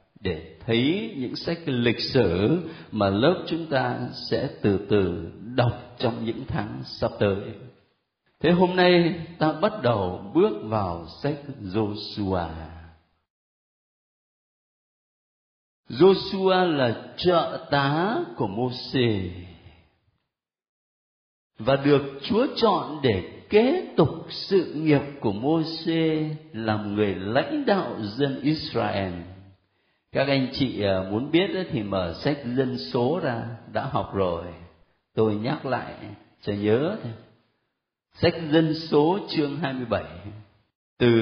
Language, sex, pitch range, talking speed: Vietnamese, male, 100-155 Hz, 115 wpm